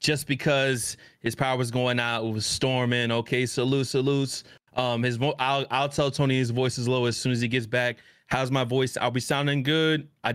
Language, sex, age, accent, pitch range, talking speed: English, male, 20-39, American, 125-150 Hz, 220 wpm